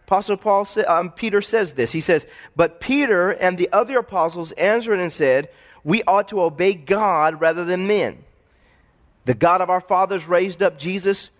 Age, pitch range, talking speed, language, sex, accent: 40-59, 175-220 Hz, 180 wpm, English, male, American